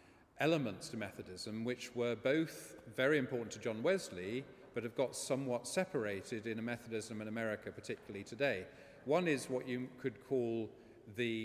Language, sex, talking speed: English, male, 155 wpm